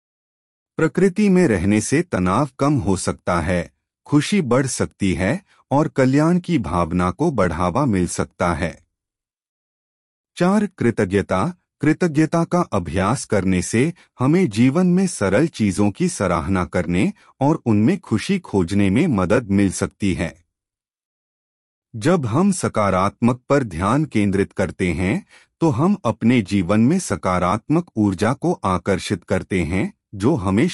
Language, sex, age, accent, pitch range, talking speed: Hindi, male, 30-49, native, 95-145 Hz, 130 wpm